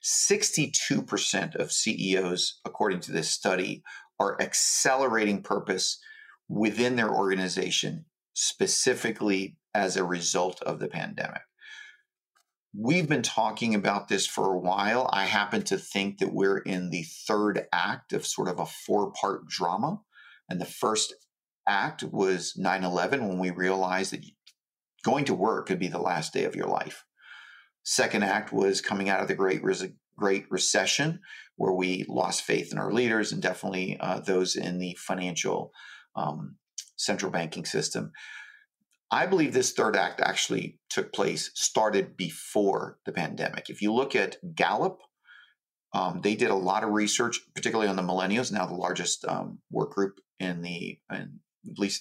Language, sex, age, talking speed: English, male, 40-59, 150 wpm